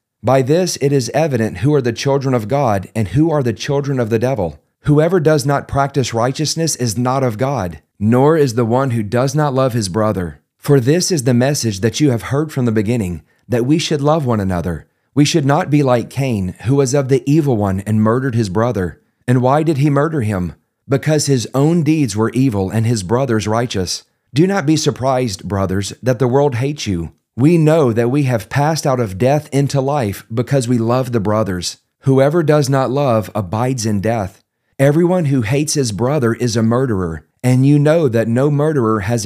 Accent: American